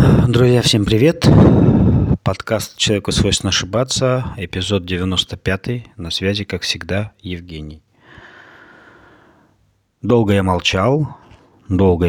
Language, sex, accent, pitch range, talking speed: Russian, male, native, 85-100 Hz, 90 wpm